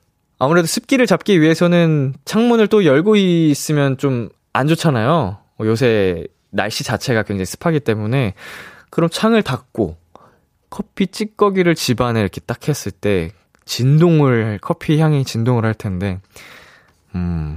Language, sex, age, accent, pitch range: Korean, male, 20-39, native, 110-170 Hz